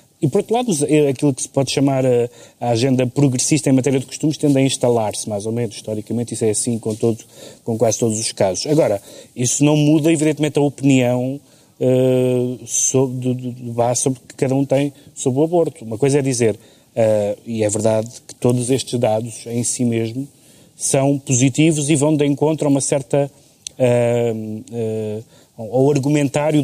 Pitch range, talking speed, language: 120-150 Hz, 165 wpm, Portuguese